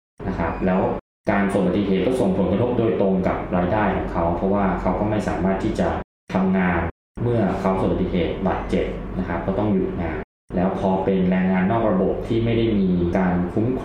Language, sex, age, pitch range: Thai, male, 20-39, 90-105 Hz